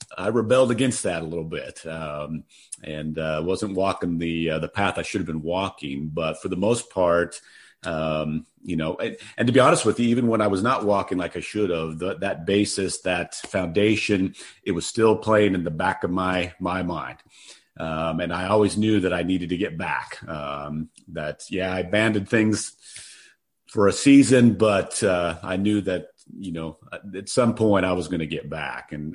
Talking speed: 205 wpm